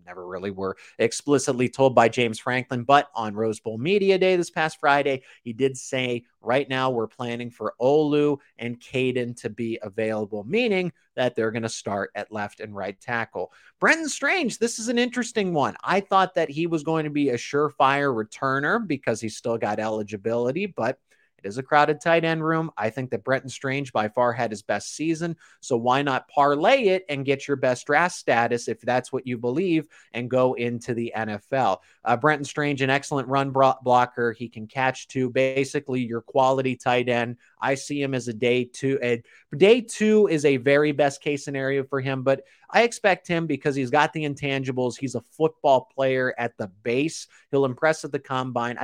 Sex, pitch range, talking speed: male, 120-150 Hz, 195 wpm